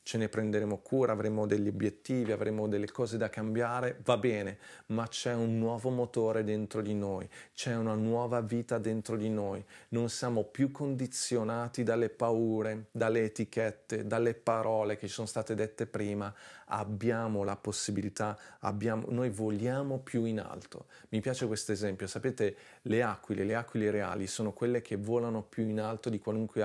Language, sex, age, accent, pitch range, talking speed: Italian, male, 40-59, native, 105-120 Hz, 165 wpm